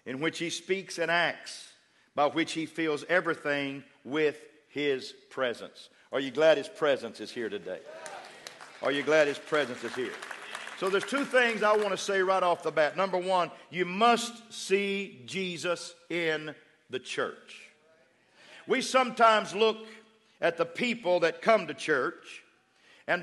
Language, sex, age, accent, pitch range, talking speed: English, male, 50-69, American, 170-220 Hz, 160 wpm